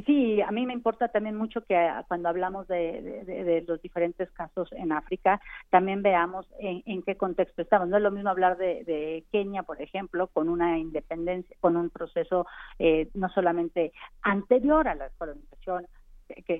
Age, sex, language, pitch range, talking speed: 40-59, female, Spanish, 170-220 Hz, 175 wpm